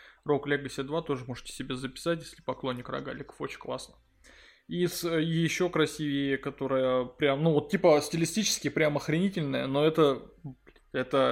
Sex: male